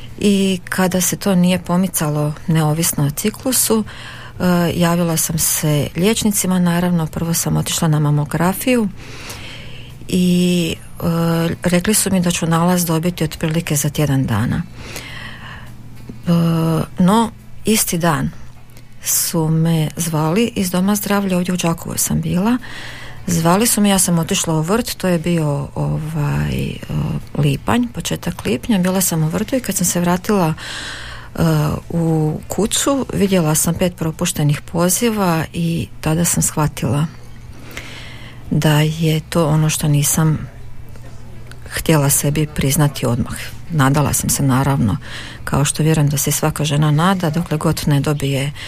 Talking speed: 135 wpm